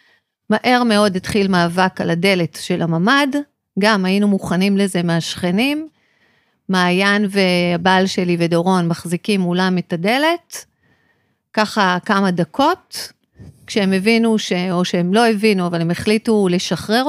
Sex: female